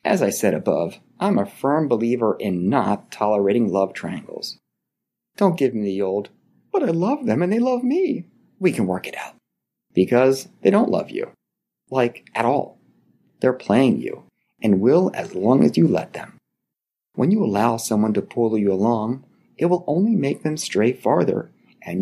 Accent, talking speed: American, 180 wpm